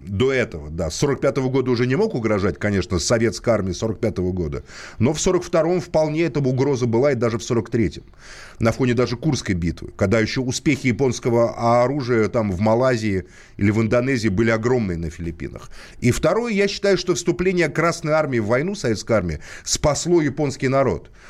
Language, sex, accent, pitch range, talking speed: Russian, male, native, 110-145 Hz, 180 wpm